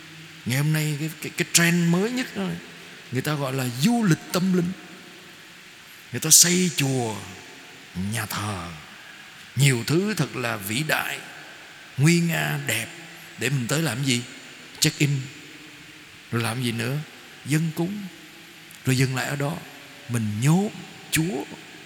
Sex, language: male, Vietnamese